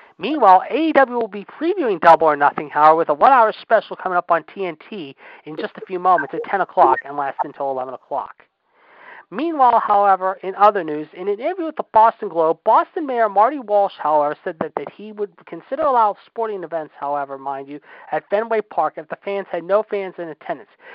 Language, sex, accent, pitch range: English, male, American, 170-225 Hz